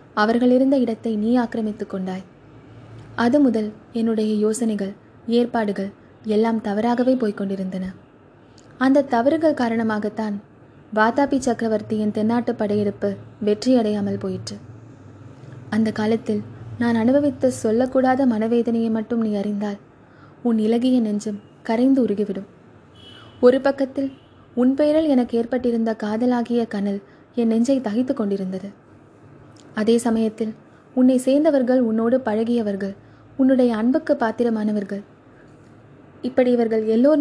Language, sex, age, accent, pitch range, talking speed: Tamil, female, 20-39, native, 210-250 Hz, 95 wpm